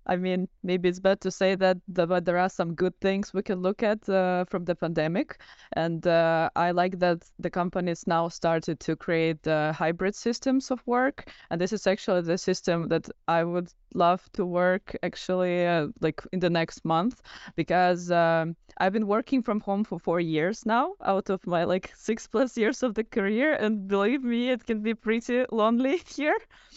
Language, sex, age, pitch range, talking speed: English, female, 20-39, 155-195 Hz, 195 wpm